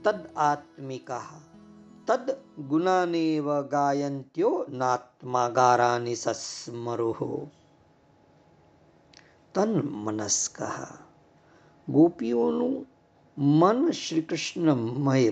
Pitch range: 130-175 Hz